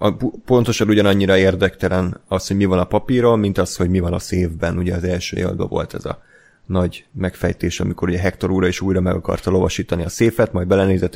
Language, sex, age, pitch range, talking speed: Hungarian, male, 30-49, 90-105 Hz, 200 wpm